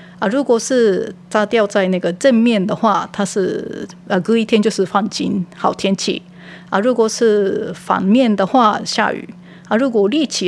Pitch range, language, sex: 180-230 Hz, Japanese, female